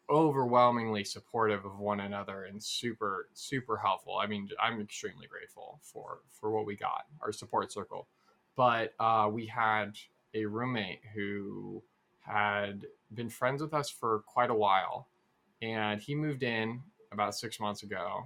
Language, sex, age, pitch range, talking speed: English, male, 20-39, 105-120 Hz, 150 wpm